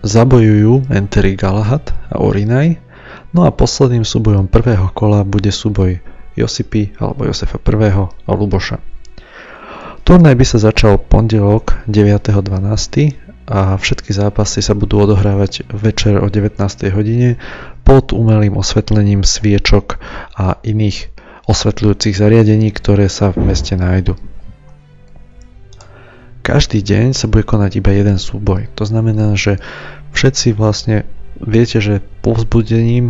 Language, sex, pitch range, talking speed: Slovak, male, 100-115 Hz, 115 wpm